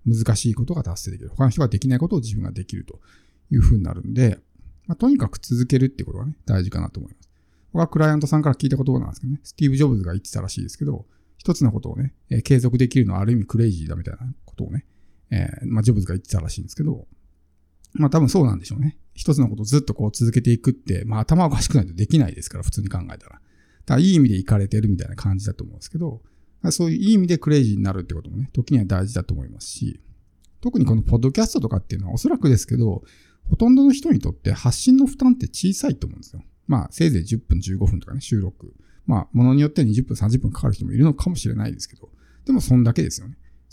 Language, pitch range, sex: Japanese, 95-140 Hz, male